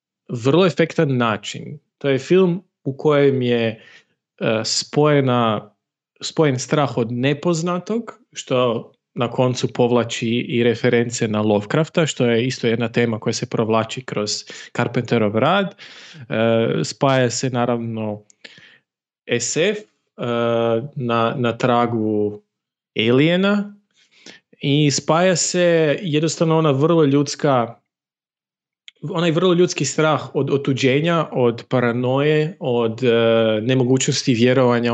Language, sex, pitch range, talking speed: Croatian, male, 120-155 Hz, 105 wpm